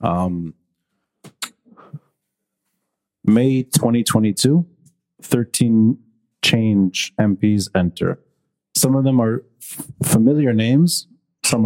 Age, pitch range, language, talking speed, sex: 30-49, 105-150 Hz, English, 75 wpm, male